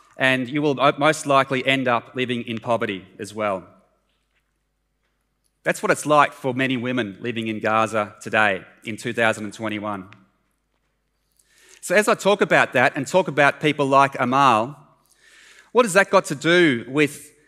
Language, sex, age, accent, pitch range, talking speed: English, male, 30-49, Australian, 125-160 Hz, 150 wpm